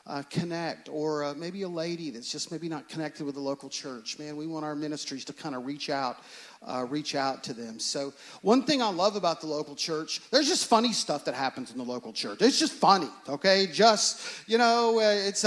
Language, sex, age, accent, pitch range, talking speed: English, male, 40-59, American, 185-235 Hz, 225 wpm